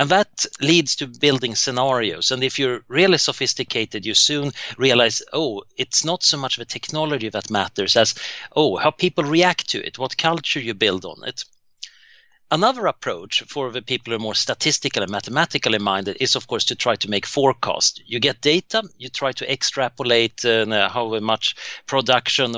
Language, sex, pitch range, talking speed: English, male, 115-155 Hz, 180 wpm